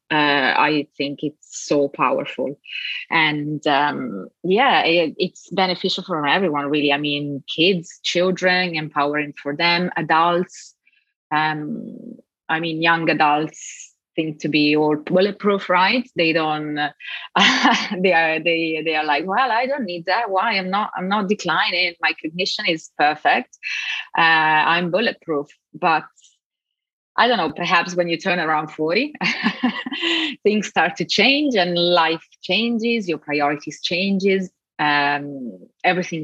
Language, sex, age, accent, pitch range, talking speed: English, female, 30-49, Italian, 155-205 Hz, 135 wpm